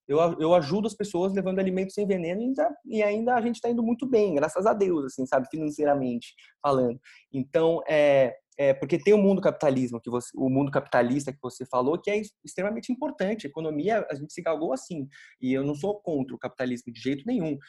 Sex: male